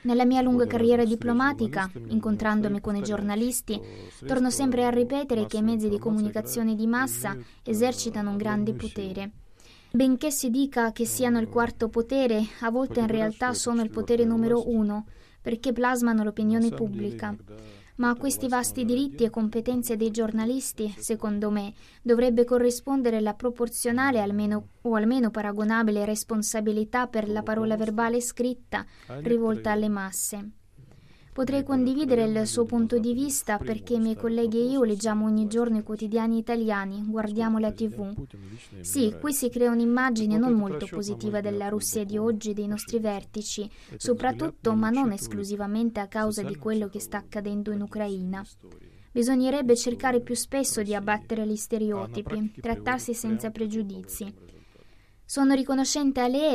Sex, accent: female, native